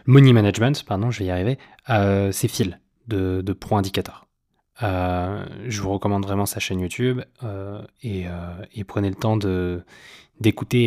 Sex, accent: male, French